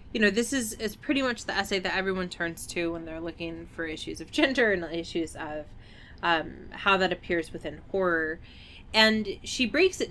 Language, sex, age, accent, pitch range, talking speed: English, female, 20-39, American, 165-210 Hz, 195 wpm